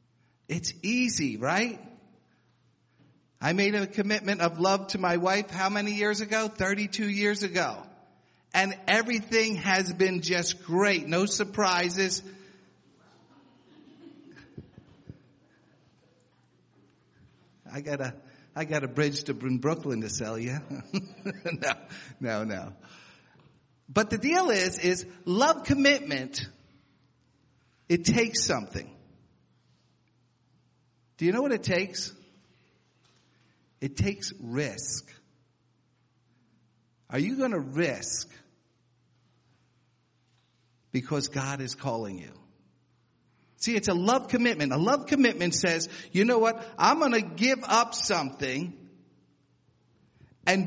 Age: 50-69